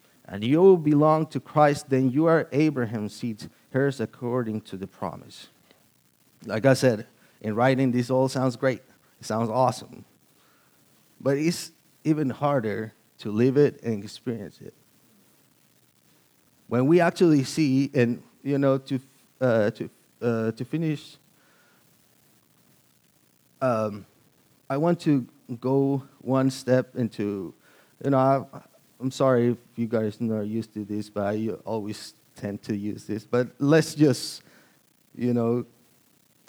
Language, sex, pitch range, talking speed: English, male, 115-135 Hz, 135 wpm